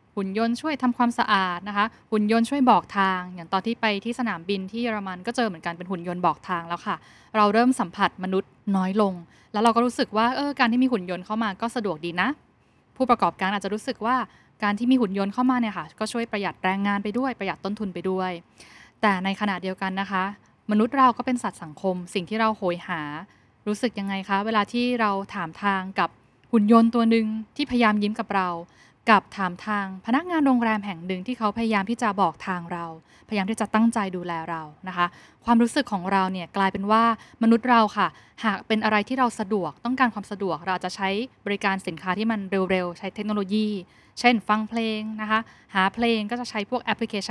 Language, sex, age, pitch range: Thai, female, 10-29, 190-230 Hz